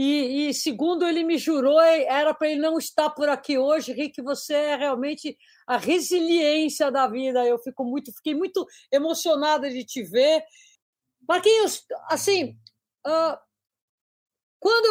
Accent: Brazilian